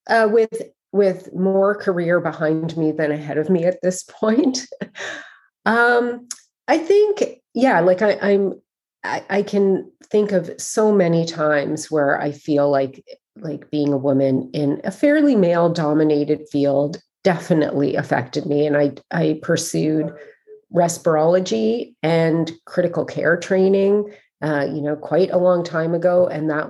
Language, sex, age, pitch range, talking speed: English, female, 30-49, 155-195 Hz, 145 wpm